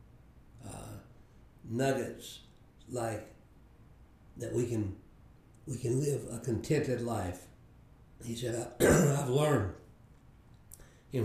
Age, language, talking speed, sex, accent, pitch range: 60-79, English, 90 wpm, male, American, 115-135 Hz